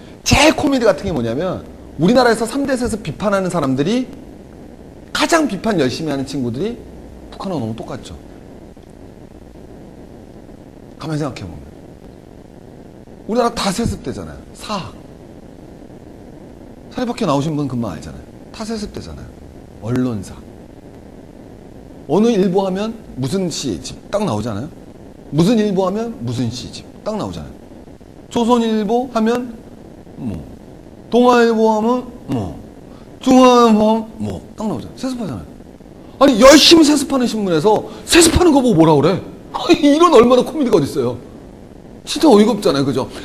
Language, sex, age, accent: Korean, male, 40-59, native